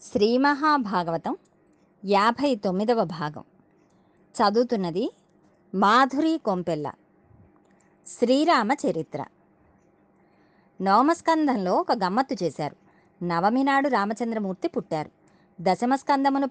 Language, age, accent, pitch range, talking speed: Telugu, 30-49, native, 180-260 Hz, 60 wpm